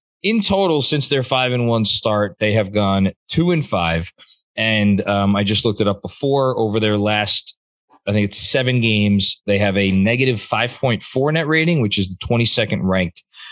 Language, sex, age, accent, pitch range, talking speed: English, male, 20-39, American, 100-140 Hz, 185 wpm